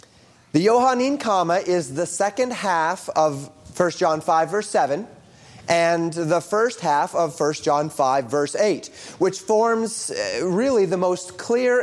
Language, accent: English, American